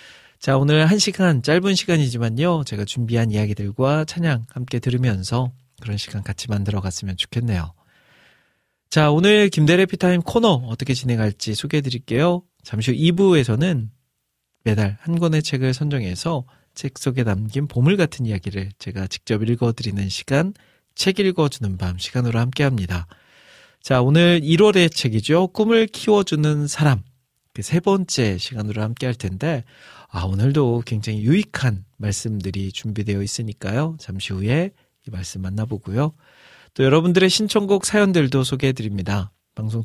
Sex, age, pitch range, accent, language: male, 40-59, 105-155 Hz, native, Korean